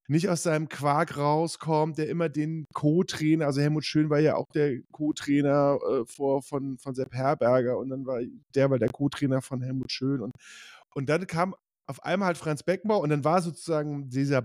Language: German